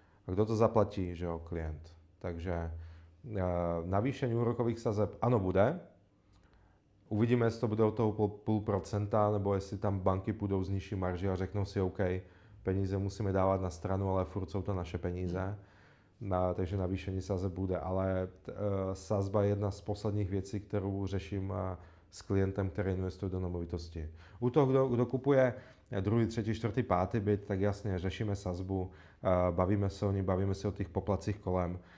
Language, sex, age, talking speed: Czech, male, 30-49, 165 wpm